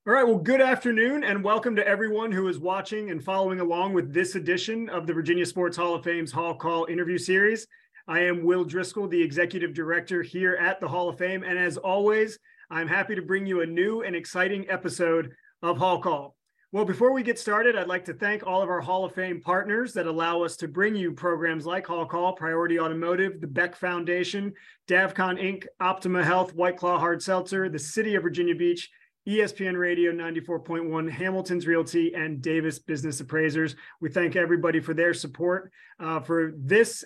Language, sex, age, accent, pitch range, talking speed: English, male, 30-49, American, 165-190 Hz, 195 wpm